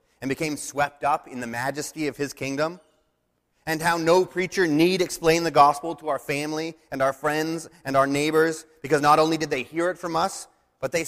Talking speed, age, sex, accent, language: 205 wpm, 30-49, male, American, English